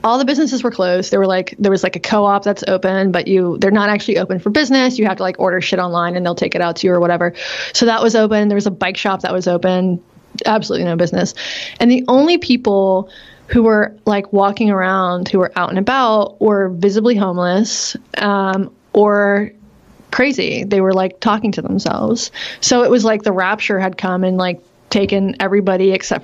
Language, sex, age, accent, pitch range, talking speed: English, female, 20-39, American, 185-215 Hz, 215 wpm